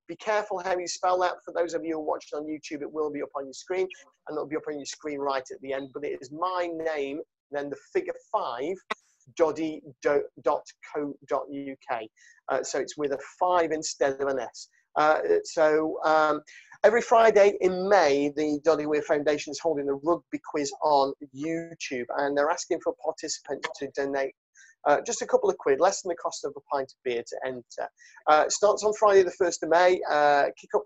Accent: British